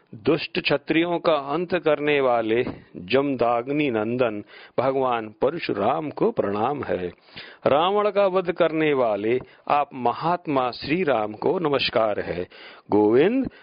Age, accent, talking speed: 50-69, native, 115 wpm